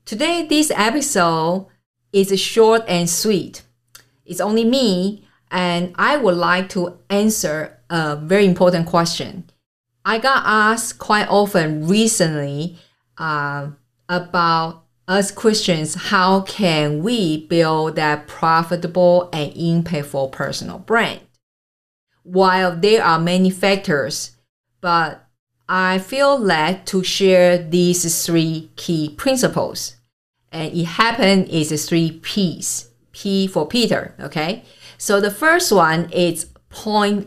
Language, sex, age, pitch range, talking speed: English, female, 50-69, 155-195 Hz, 120 wpm